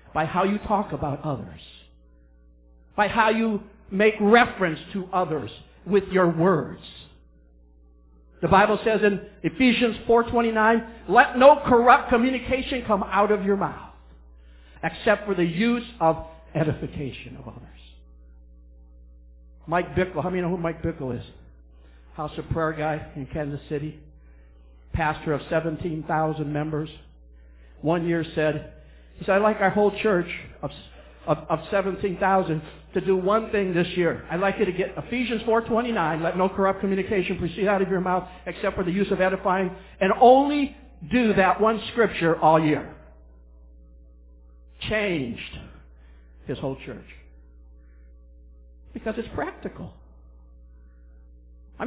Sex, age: male, 60-79